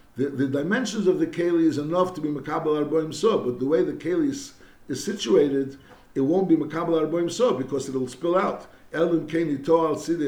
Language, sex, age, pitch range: English, male, 60-79, 130-170 Hz